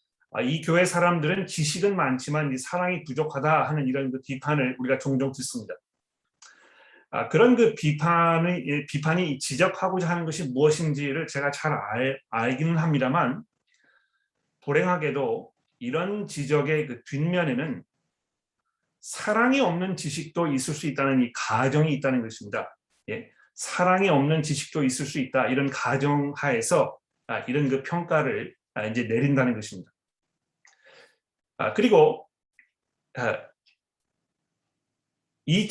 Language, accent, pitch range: Korean, native, 135-170 Hz